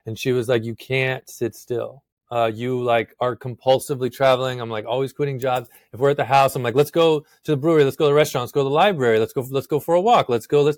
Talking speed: 285 wpm